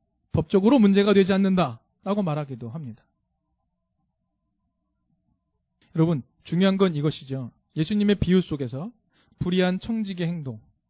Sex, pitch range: male, 150-215 Hz